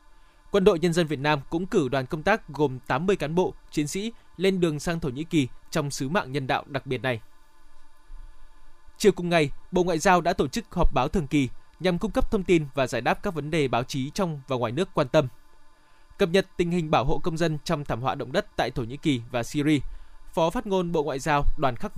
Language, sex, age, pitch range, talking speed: Vietnamese, male, 20-39, 145-175 Hz, 245 wpm